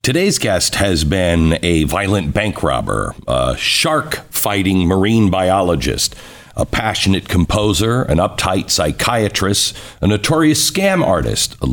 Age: 60-79